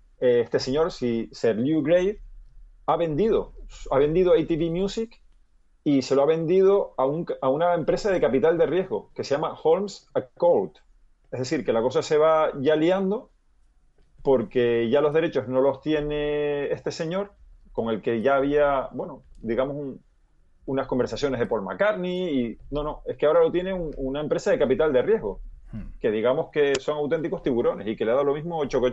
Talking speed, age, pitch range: 190 wpm, 30-49, 130-175 Hz